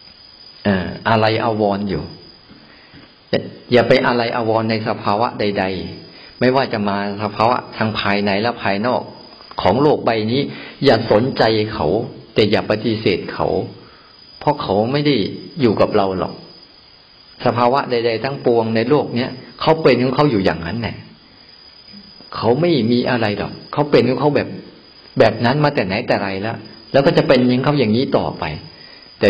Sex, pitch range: male, 105-125 Hz